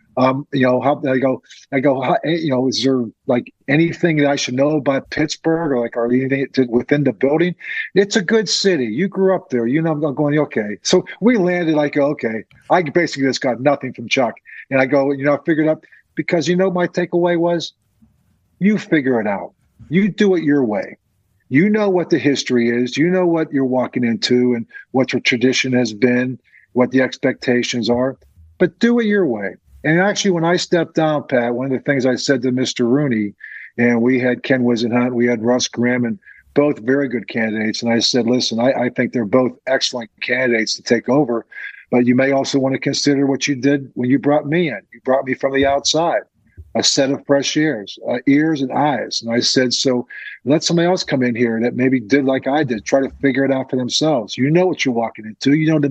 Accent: American